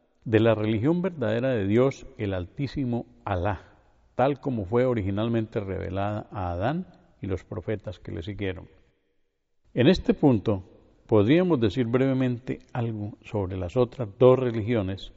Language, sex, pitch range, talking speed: Spanish, male, 100-130 Hz, 135 wpm